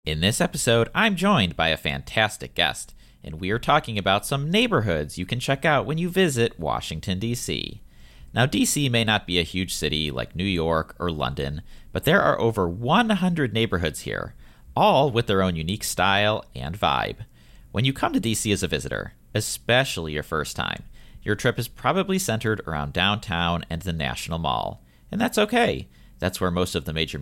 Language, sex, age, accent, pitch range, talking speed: English, male, 40-59, American, 80-120 Hz, 185 wpm